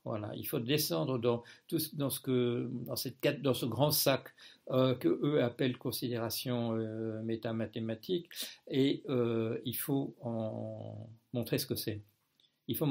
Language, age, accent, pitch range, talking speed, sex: French, 60-79, French, 115-135 Hz, 155 wpm, male